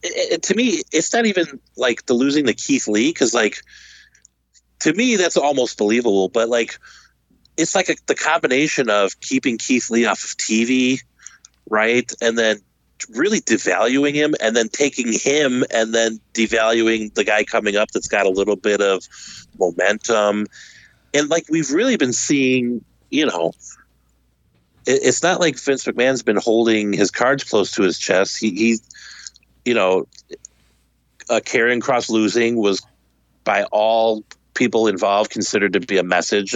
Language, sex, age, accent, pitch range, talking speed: English, male, 30-49, American, 100-130 Hz, 160 wpm